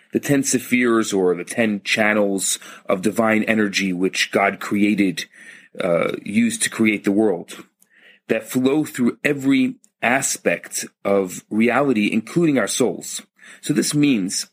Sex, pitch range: male, 105-145 Hz